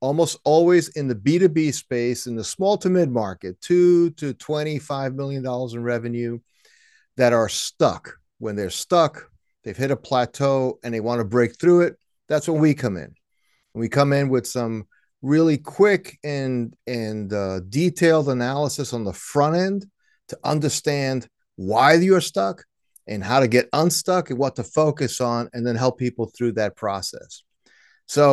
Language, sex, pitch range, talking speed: English, male, 125-160 Hz, 165 wpm